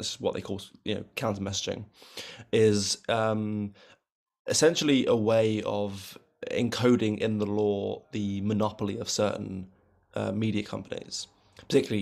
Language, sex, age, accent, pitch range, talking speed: English, male, 20-39, British, 100-110 Hz, 135 wpm